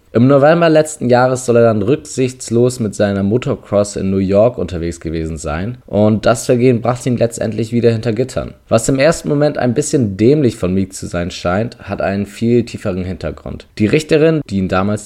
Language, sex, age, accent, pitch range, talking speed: German, male, 20-39, German, 95-120 Hz, 190 wpm